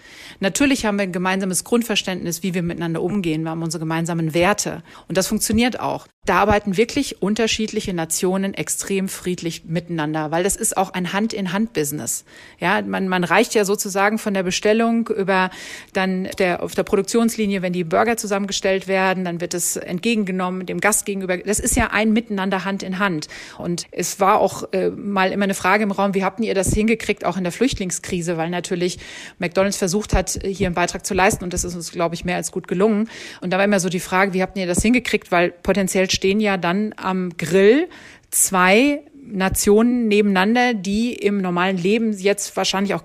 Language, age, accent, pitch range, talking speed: German, 40-59, German, 180-210 Hz, 190 wpm